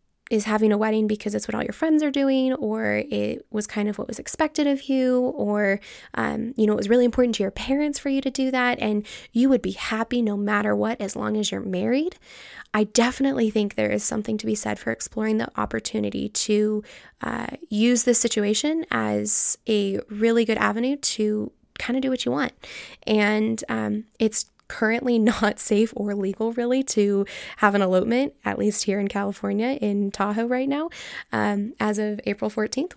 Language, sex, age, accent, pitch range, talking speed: English, female, 10-29, American, 200-245 Hz, 195 wpm